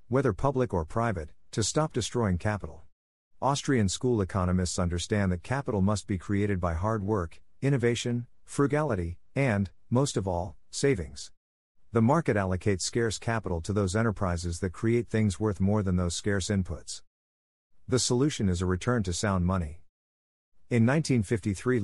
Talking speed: 150 wpm